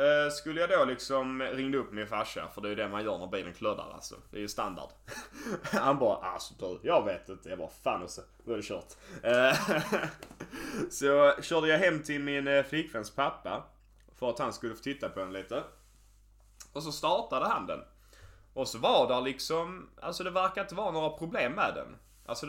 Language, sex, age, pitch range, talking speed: English, male, 10-29, 125-165 Hz, 190 wpm